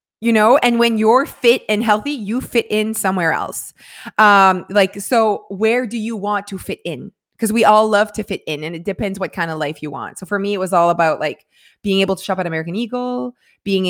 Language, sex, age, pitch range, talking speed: English, female, 20-39, 175-220 Hz, 240 wpm